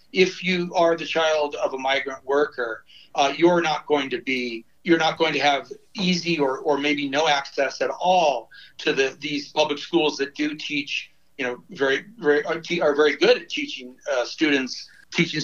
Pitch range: 135-170 Hz